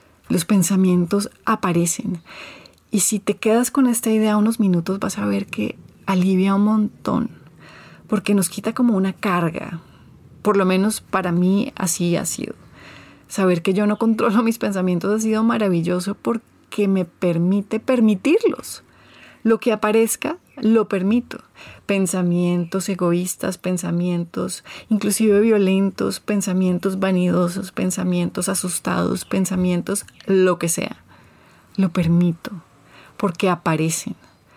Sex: female